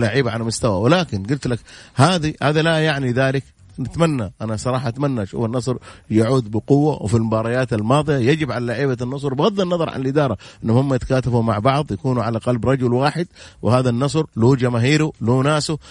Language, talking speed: English, 170 wpm